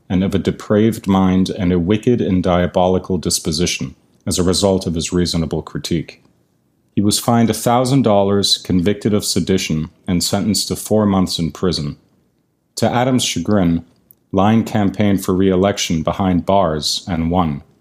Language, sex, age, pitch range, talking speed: English, male, 40-59, 85-105 Hz, 145 wpm